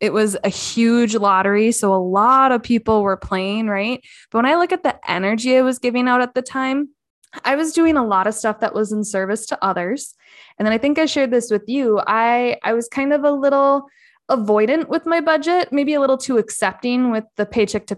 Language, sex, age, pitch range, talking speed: English, female, 20-39, 200-250 Hz, 230 wpm